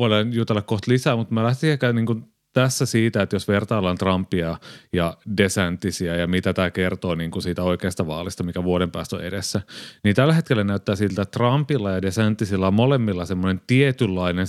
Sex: male